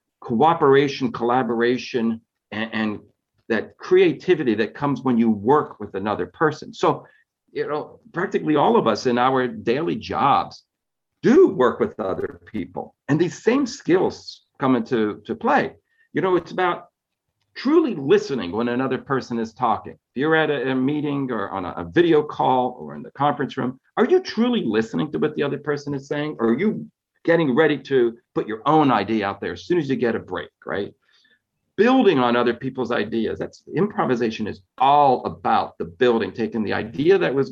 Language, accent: English, American